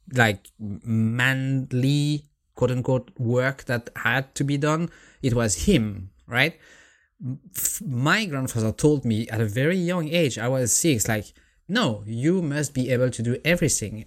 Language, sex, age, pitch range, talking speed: English, male, 20-39, 110-140 Hz, 145 wpm